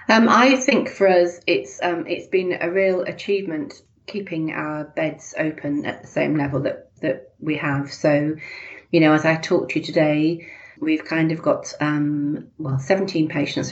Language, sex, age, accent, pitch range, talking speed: English, female, 40-59, British, 150-180 Hz, 180 wpm